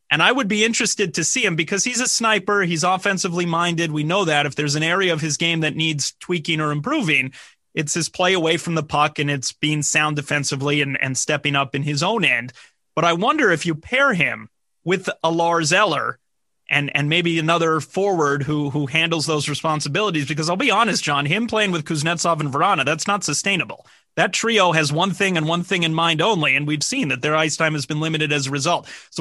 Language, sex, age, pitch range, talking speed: English, male, 30-49, 150-190 Hz, 225 wpm